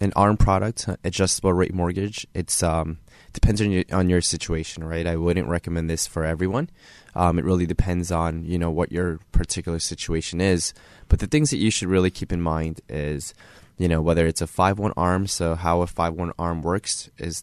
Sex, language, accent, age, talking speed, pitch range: male, English, American, 20-39, 200 wpm, 80-95 Hz